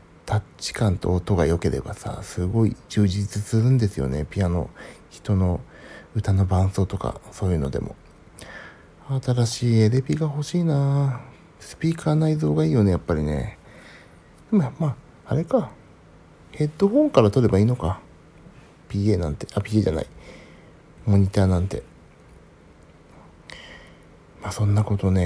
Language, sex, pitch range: Japanese, male, 90-125 Hz